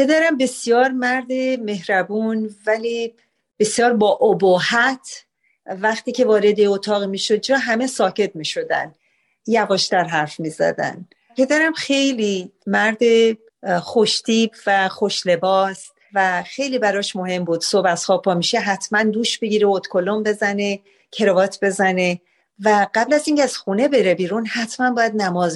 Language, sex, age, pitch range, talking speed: Persian, female, 40-59, 190-240 Hz, 130 wpm